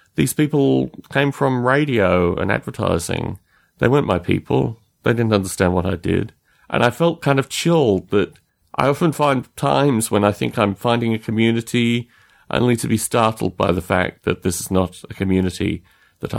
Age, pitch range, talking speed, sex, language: 40-59, 95-130 Hz, 180 wpm, male, English